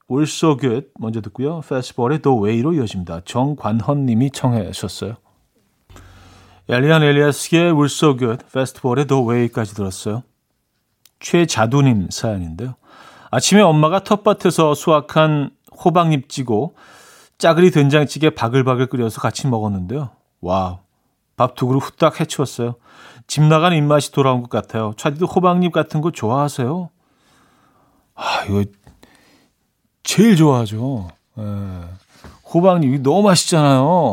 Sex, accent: male, native